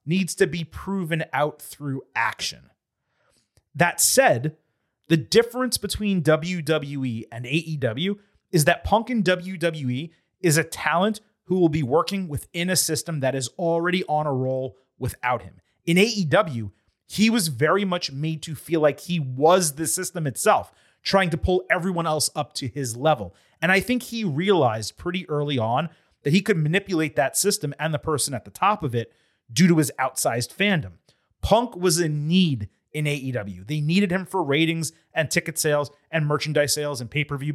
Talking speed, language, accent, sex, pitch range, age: 175 wpm, English, American, male, 140-185 Hz, 30-49